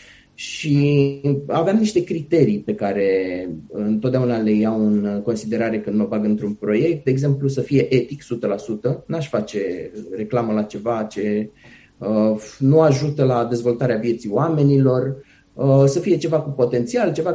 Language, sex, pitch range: Romanian, male, 115-155 Hz